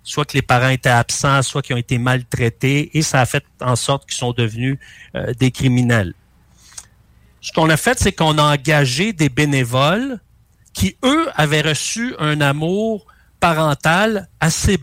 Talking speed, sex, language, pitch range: 165 wpm, male, French, 135-180 Hz